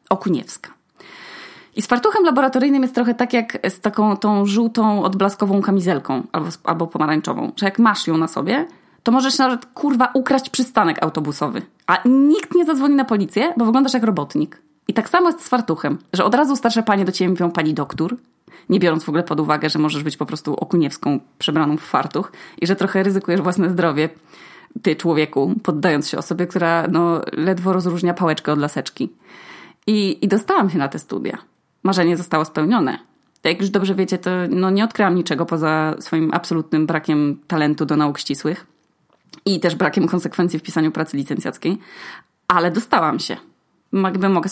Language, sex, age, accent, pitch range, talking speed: Polish, female, 20-39, native, 160-225 Hz, 175 wpm